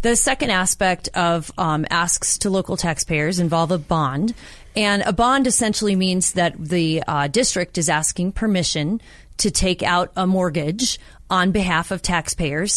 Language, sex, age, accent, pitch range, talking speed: English, female, 30-49, American, 165-195 Hz, 155 wpm